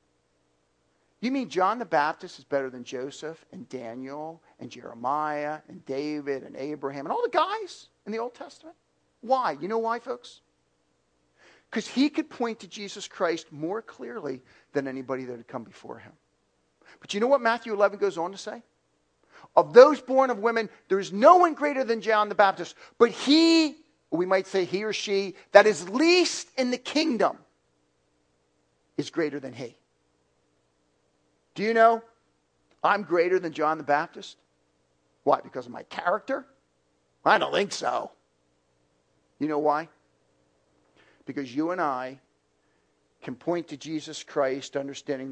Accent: American